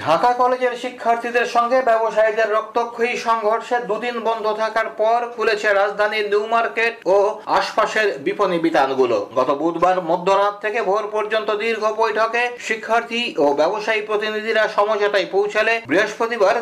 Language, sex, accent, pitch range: Bengali, male, native, 200-225 Hz